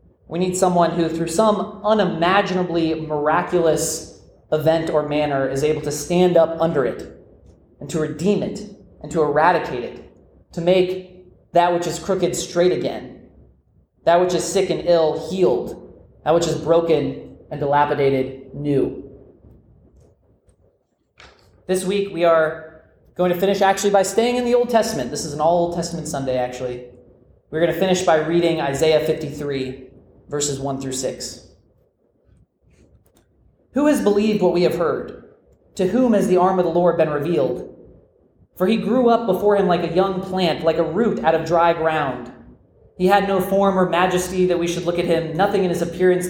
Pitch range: 140-180 Hz